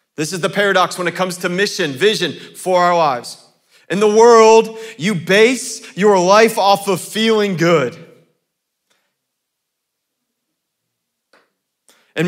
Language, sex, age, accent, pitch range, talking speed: English, male, 40-59, American, 160-220 Hz, 120 wpm